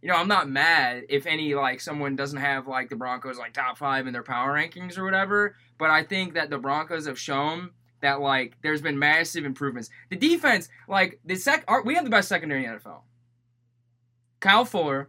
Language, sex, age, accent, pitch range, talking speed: English, male, 20-39, American, 130-185 Hz, 210 wpm